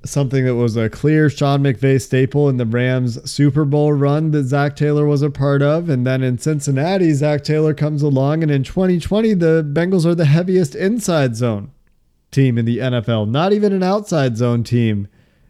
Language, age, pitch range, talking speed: English, 30-49, 125-150 Hz, 190 wpm